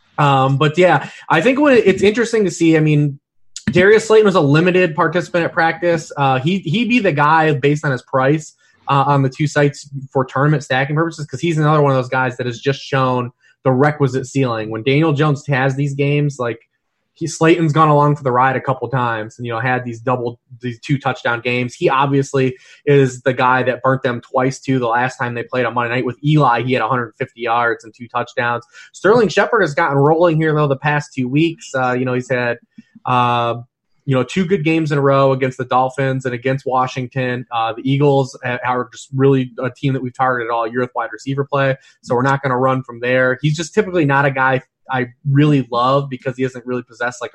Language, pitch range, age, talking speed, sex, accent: English, 125-150 Hz, 20-39, 225 wpm, male, American